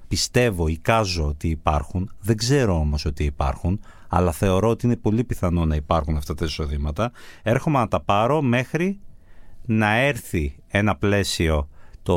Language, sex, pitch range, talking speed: Greek, male, 90-115 Hz, 150 wpm